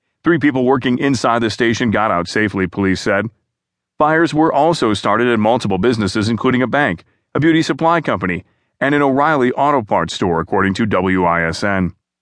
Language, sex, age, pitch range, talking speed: English, male, 40-59, 105-145 Hz, 165 wpm